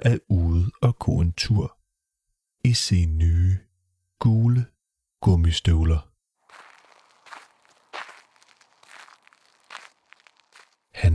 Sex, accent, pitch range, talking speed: male, native, 90-110 Hz, 65 wpm